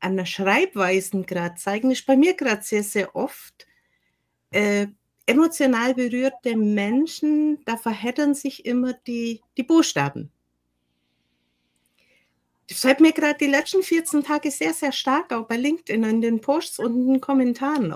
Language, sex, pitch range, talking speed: German, female, 185-265 Hz, 145 wpm